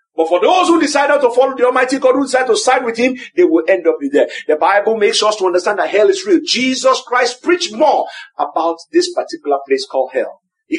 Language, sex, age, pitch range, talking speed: English, male, 50-69, 235-345 Hz, 245 wpm